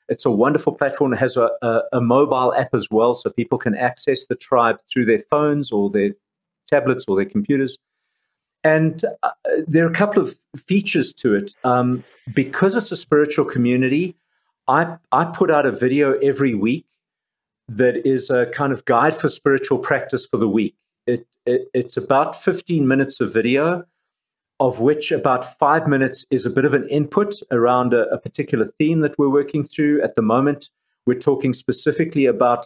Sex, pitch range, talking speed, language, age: male, 125-150 Hz, 180 wpm, English, 50-69